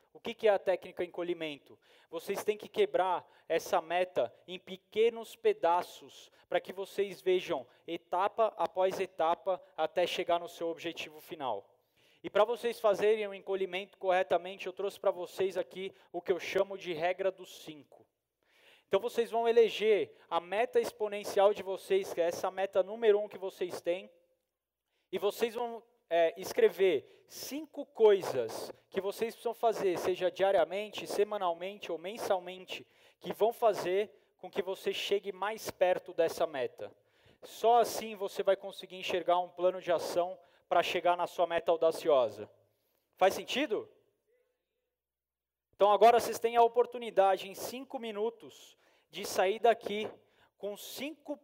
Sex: male